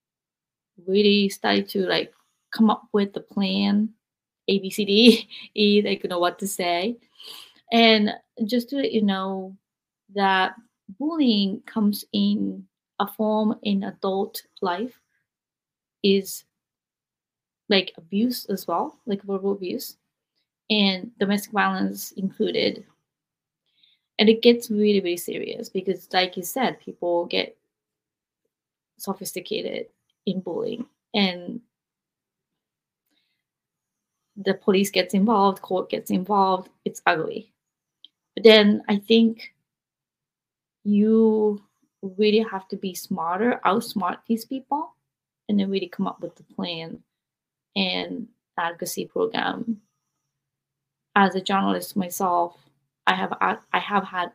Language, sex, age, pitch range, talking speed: English, female, 20-39, 185-225 Hz, 115 wpm